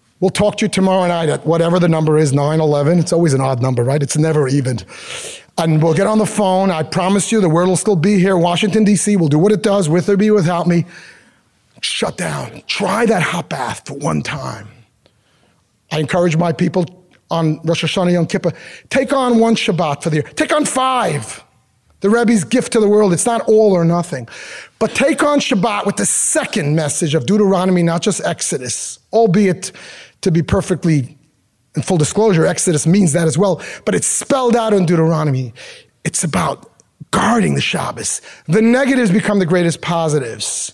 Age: 30-49